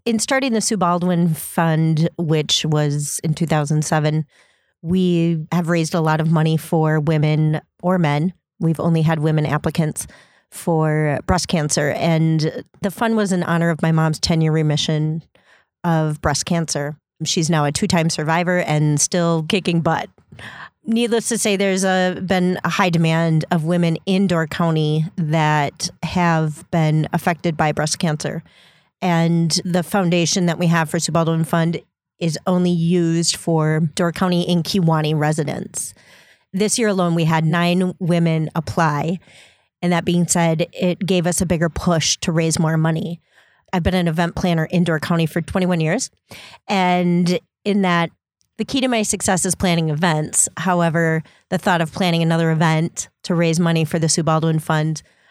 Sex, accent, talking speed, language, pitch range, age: female, American, 160 wpm, English, 160-180 Hz, 30-49